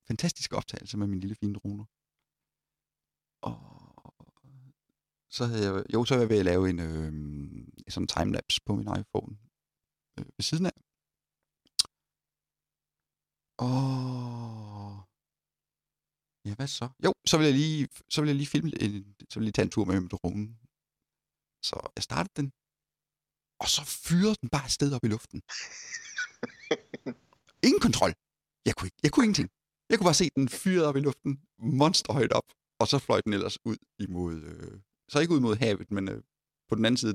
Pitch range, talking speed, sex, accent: 100-140 Hz, 170 wpm, male, native